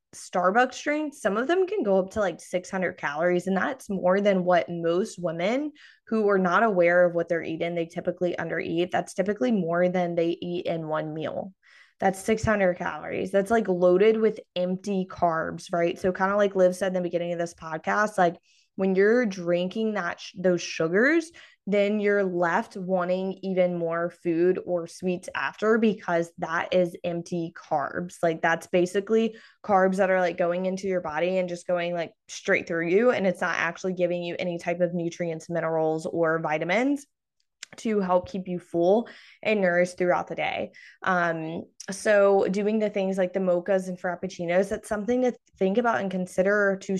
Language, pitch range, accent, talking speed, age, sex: English, 175-200 Hz, American, 185 wpm, 20-39, female